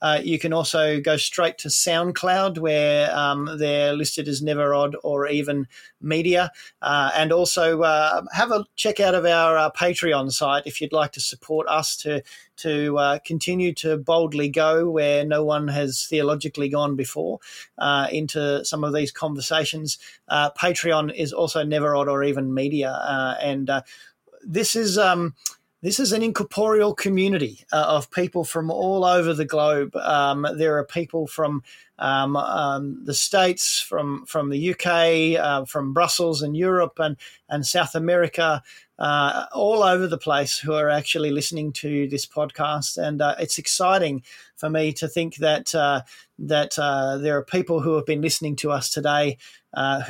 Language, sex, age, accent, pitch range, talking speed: English, male, 30-49, Australian, 145-165 Hz, 170 wpm